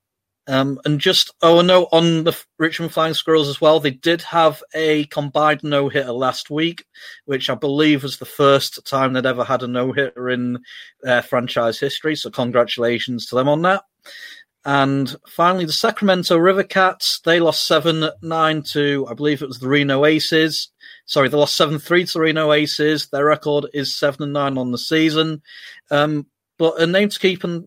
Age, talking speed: 40-59, 185 wpm